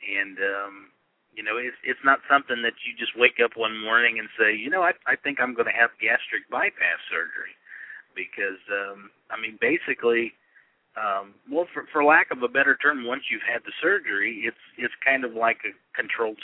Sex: male